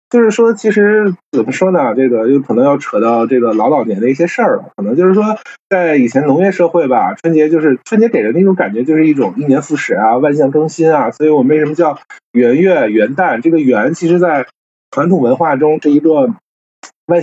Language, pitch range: Chinese, 130-190 Hz